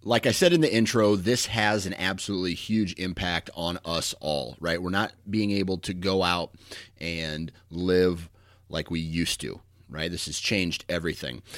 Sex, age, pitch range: male, 30-49, 90-105 Hz